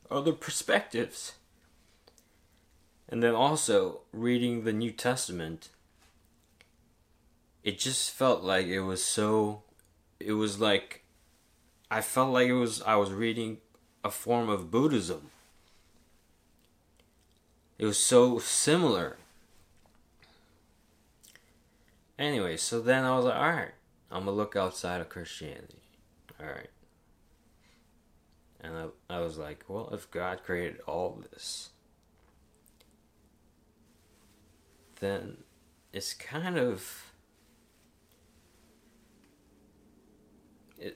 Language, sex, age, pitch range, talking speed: English, male, 20-39, 80-115 Hz, 95 wpm